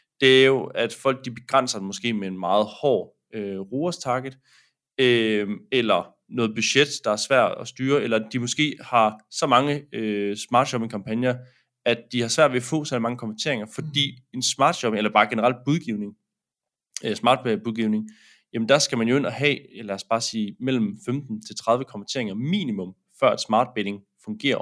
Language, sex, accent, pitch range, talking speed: Danish, male, native, 105-130 Hz, 185 wpm